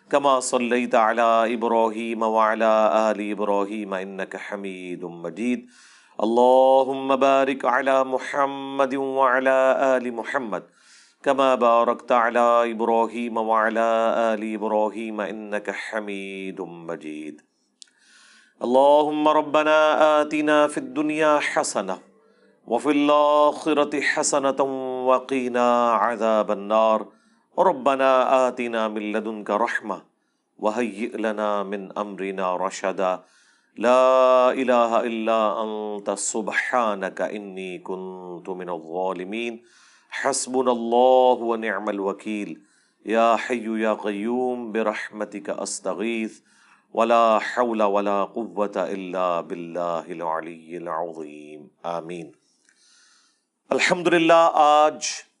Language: Urdu